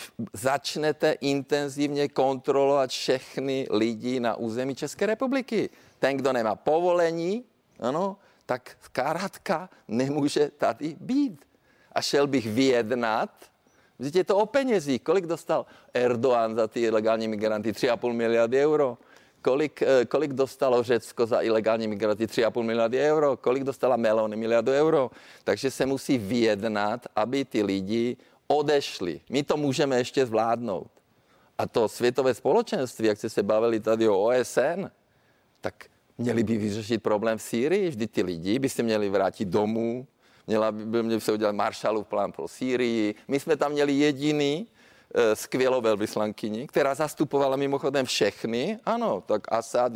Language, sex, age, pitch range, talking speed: Czech, male, 50-69, 115-145 Hz, 140 wpm